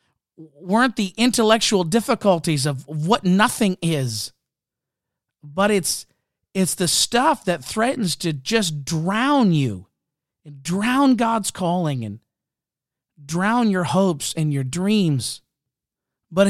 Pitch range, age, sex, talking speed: 150-195 Hz, 40-59, male, 115 wpm